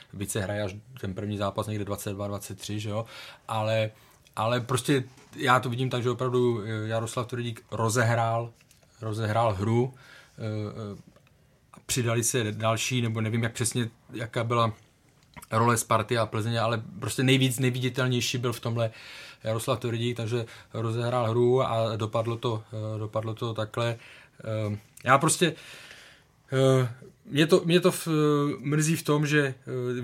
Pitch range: 110-130 Hz